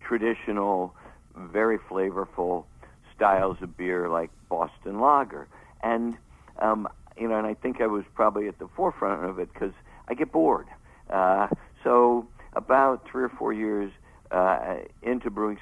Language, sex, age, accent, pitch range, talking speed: English, male, 60-79, American, 95-120 Hz, 145 wpm